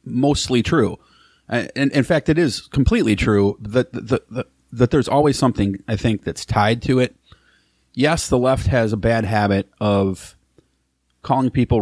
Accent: American